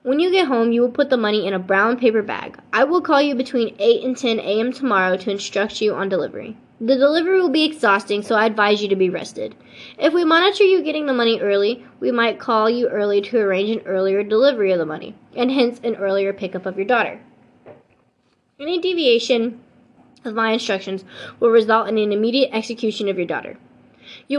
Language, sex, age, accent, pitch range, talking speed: English, female, 10-29, American, 200-280 Hz, 210 wpm